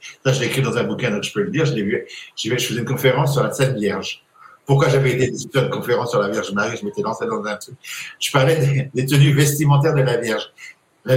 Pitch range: 120-140 Hz